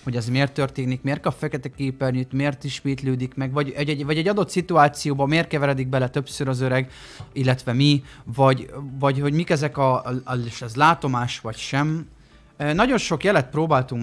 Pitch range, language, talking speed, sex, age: 125-155 Hz, Hungarian, 165 wpm, male, 30-49